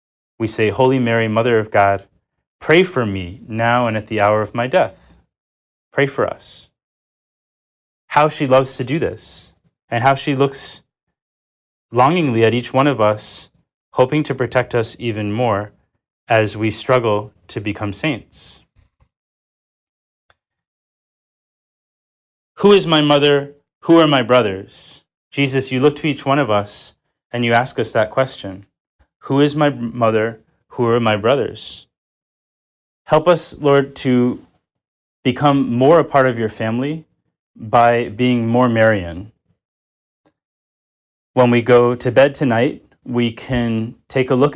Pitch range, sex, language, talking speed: 110-140 Hz, male, English, 140 wpm